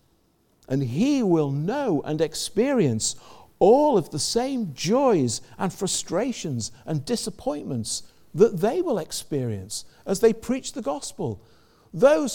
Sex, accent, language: male, British, English